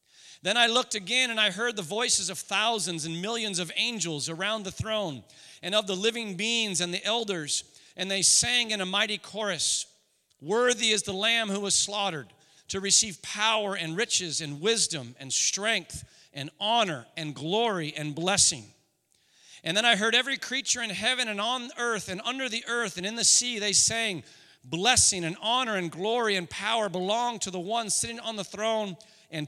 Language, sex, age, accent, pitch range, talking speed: English, male, 40-59, American, 170-220 Hz, 185 wpm